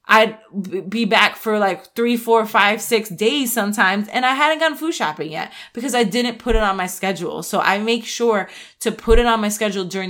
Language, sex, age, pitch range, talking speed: English, female, 20-39, 175-225 Hz, 220 wpm